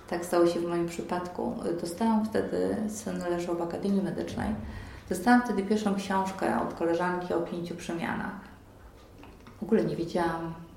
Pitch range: 165-190 Hz